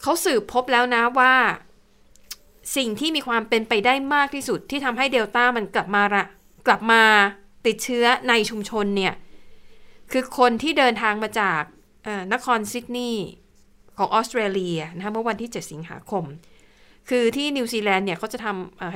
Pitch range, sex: 200-250 Hz, female